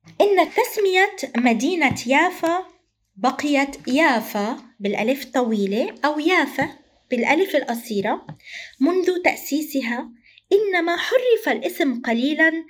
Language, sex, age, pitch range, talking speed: Arabic, female, 20-39, 225-310 Hz, 85 wpm